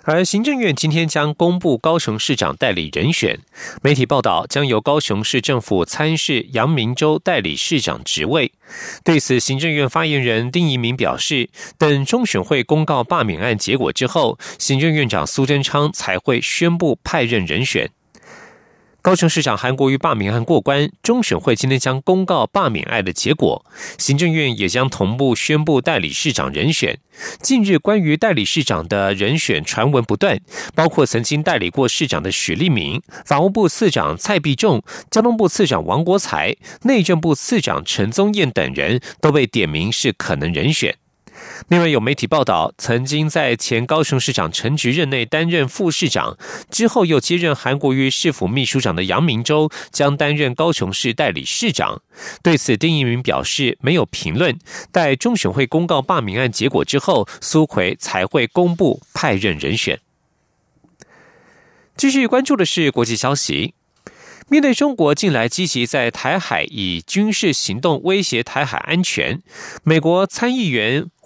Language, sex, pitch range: German, male, 125-170 Hz